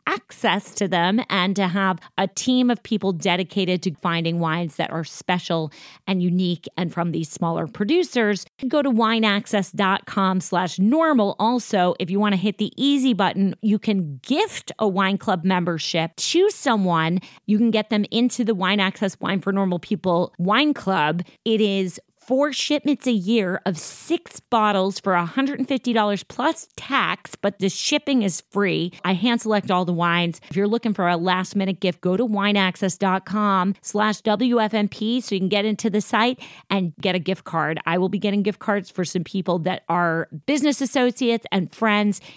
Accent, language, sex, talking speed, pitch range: American, English, female, 175 wpm, 180-225 Hz